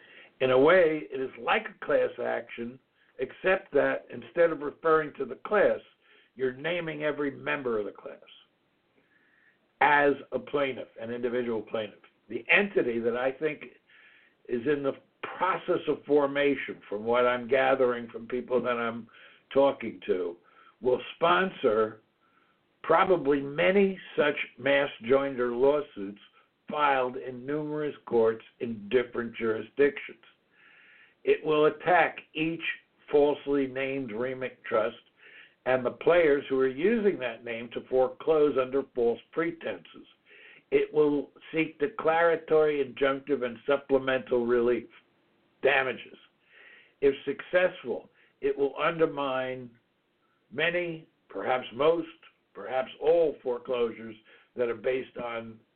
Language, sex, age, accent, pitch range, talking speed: English, male, 60-79, American, 125-160 Hz, 120 wpm